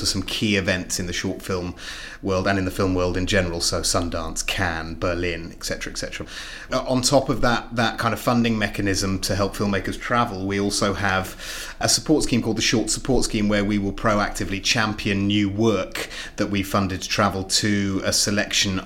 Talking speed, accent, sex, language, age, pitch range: 190 wpm, British, male, English, 30-49, 95-110 Hz